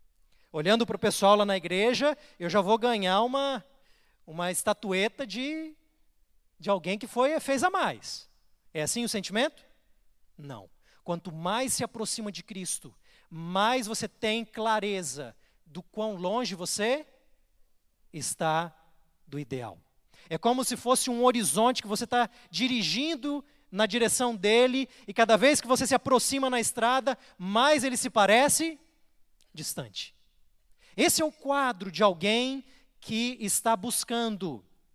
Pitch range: 180-250 Hz